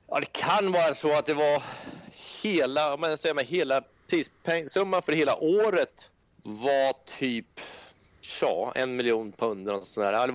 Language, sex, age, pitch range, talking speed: English, male, 30-49, 125-155 Hz, 170 wpm